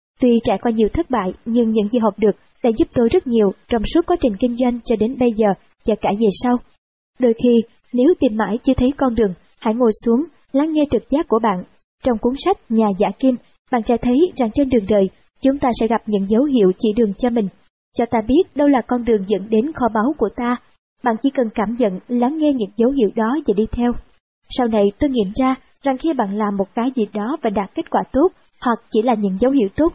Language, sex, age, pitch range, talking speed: Vietnamese, male, 20-39, 215-270 Hz, 250 wpm